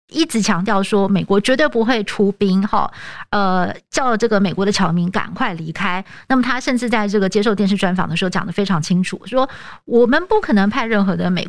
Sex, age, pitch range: female, 50-69, 185-235 Hz